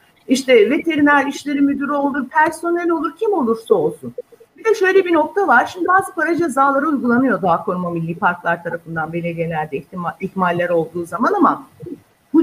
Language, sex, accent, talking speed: Turkish, female, native, 155 wpm